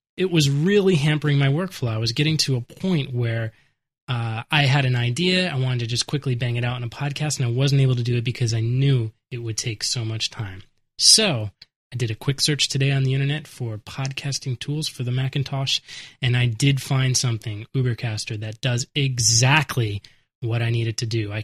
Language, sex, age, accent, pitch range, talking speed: English, male, 20-39, American, 120-140 Hz, 215 wpm